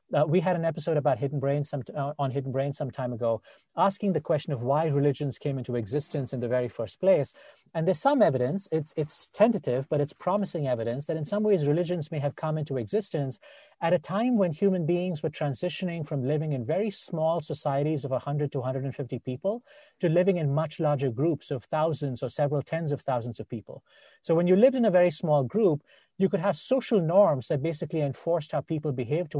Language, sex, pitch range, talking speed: English, male, 140-175 Hz, 220 wpm